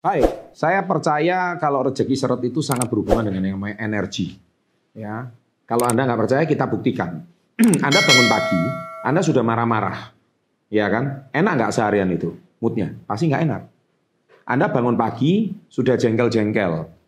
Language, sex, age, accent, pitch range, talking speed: Indonesian, male, 30-49, native, 105-145 Hz, 145 wpm